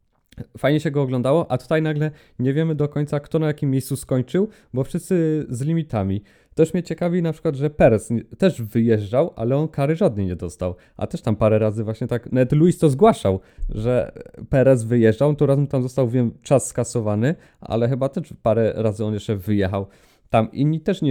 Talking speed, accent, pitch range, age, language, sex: 195 wpm, native, 115-150 Hz, 20-39, Polish, male